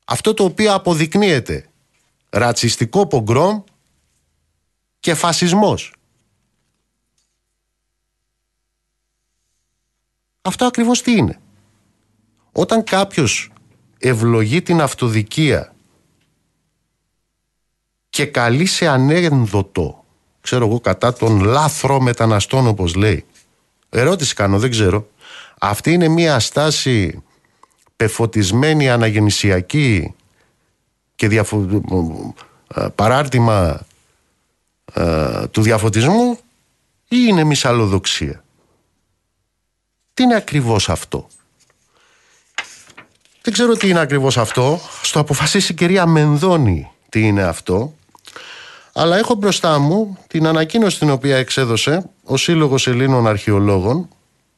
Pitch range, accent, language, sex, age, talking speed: 105-165 Hz, native, Greek, male, 50-69, 85 wpm